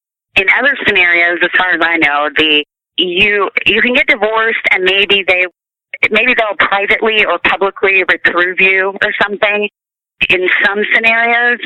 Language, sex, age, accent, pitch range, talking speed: English, female, 30-49, American, 185-230 Hz, 150 wpm